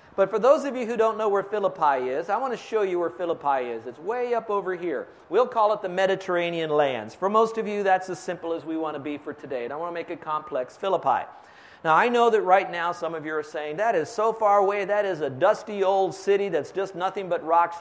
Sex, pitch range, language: male, 170-220 Hz, English